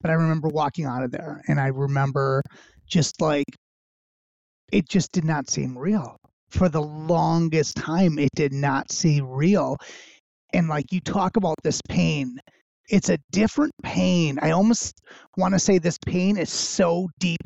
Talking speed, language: 165 wpm, English